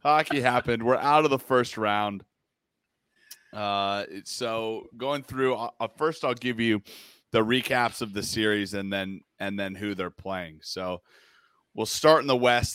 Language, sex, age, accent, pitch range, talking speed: English, male, 30-49, American, 95-120 Hz, 165 wpm